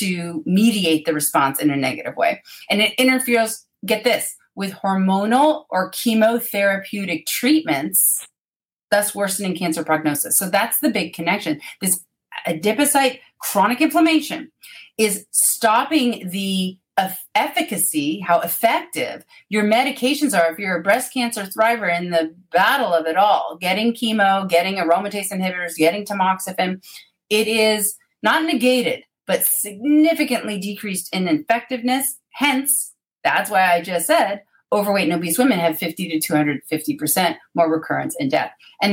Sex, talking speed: female, 135 wpm